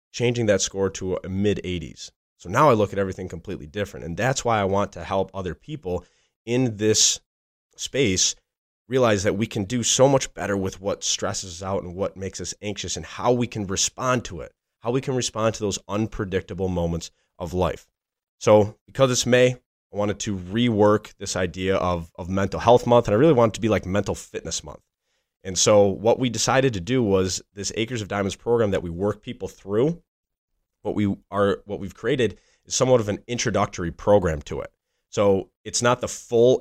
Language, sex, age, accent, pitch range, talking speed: English, male, 20-39, American, 95-120 Hz, 205 wpm